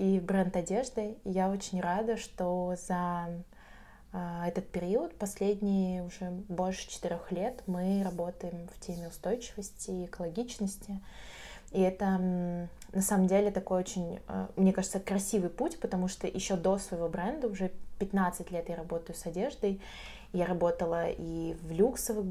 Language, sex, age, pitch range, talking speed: Russian, female, 20-39, 175-195 Hz, 135 wpm